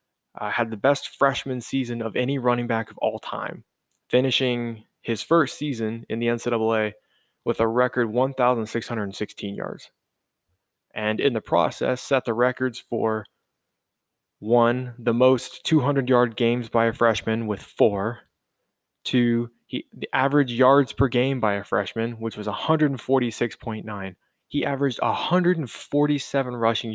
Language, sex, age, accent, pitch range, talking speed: English, male, 20-39, American, 110-135 Hz, 130 wpm